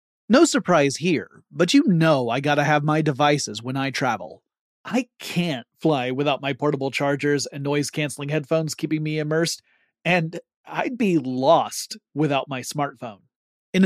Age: 30-49